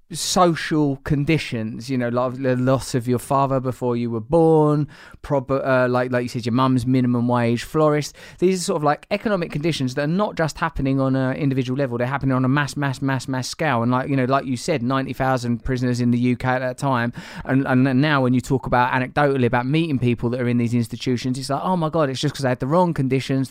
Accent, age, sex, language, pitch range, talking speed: British, 20-39, male, English, 130-155 Hz, 240 wpm